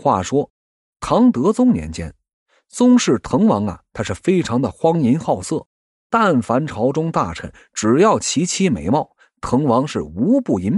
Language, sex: Chinese, male